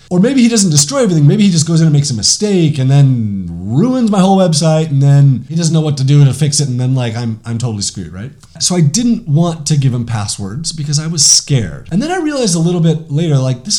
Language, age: English, 30-49